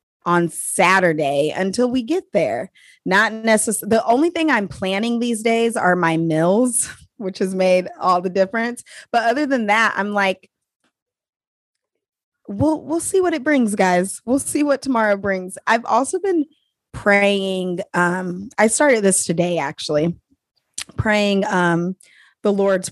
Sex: female